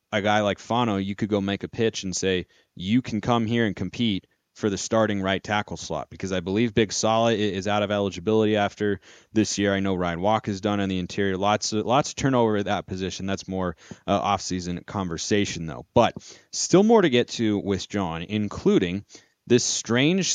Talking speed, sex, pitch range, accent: 210 wpm, male, 100-120 Hz, American